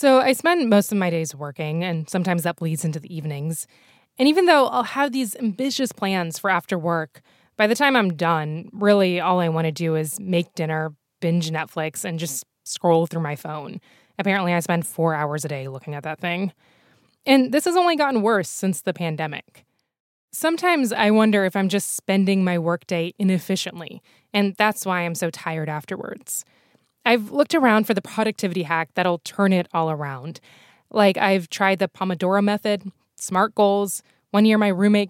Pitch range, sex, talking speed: 170-215 Hz, female, 185 wpm